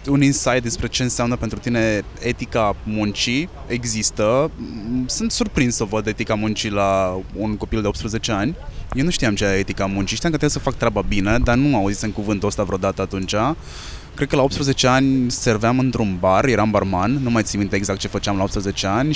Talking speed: 200 wpm